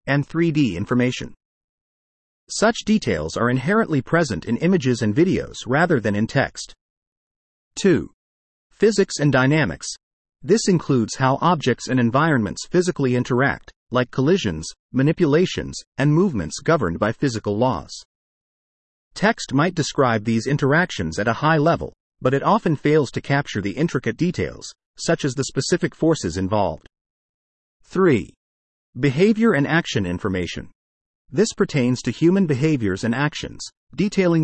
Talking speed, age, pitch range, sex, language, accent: 130 wpm, 40-59, 105-165 Hz, male, English, American